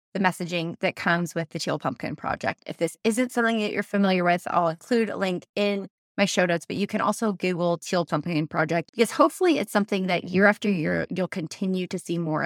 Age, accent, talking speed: 20-39, American, 220 wpm